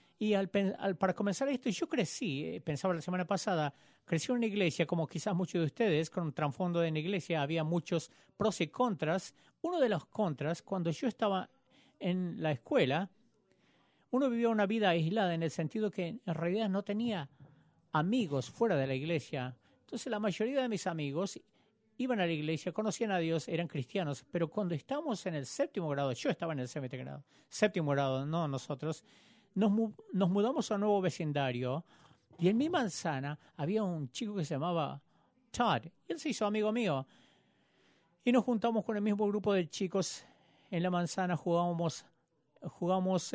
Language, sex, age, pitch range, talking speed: English, male, 40-59, 155-210 Hz, 180 wpm